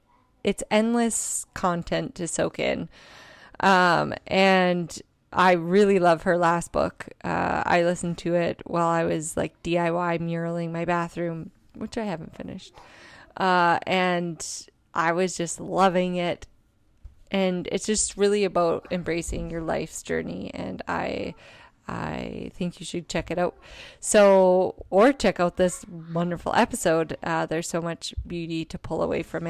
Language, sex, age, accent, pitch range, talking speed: English, female, 20-39, American, 170-195 Hz, 145 wpm